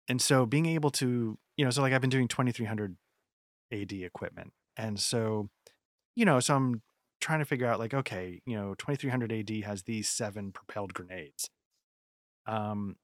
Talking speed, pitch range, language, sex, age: 170 wpm, 100-125 Hz, English, male, 30-49